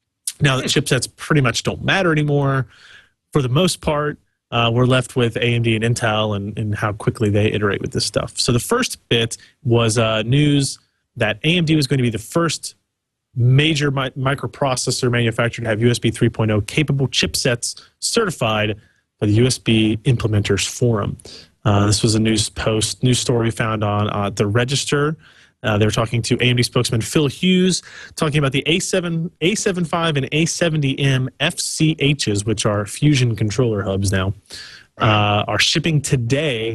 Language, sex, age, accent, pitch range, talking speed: English, male, 30-49, American, 110-140 Hz, 160 wpm